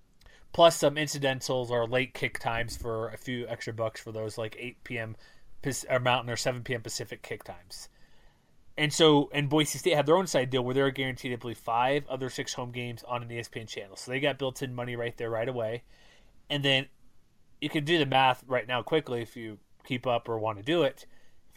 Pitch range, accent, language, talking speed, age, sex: 120-140 Hz, American, English, 225 wpm, 30-49, male